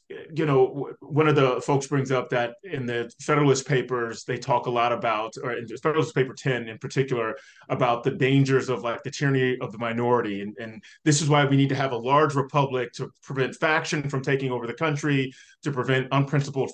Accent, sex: American, male